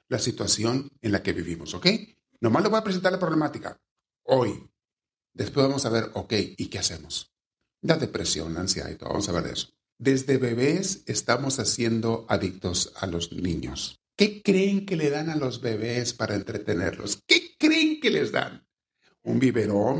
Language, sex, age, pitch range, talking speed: Spanish, male, 50-69, 115-195 Hz, 175 wpm